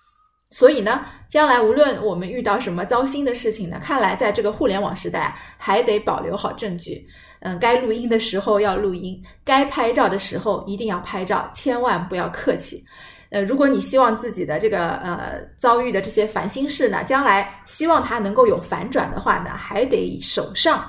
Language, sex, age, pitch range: Chinese, female, 20-39, 200-275 Hz